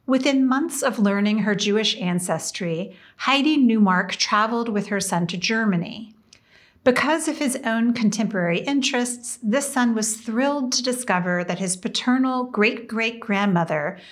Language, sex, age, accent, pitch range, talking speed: English, female, 40-59, American, 195-245 Hz, 130 wpm